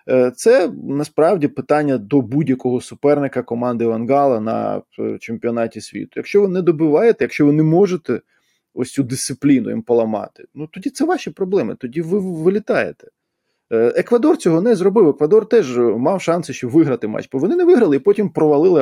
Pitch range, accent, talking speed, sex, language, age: 125-190 Hz, native, 160 wpm, male, Ukrainian, 20-39